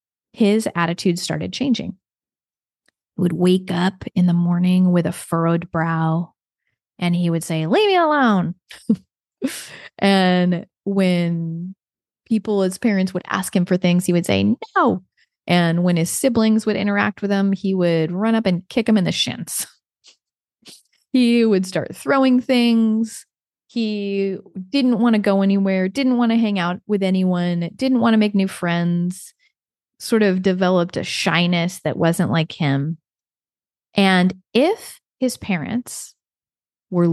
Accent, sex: American, female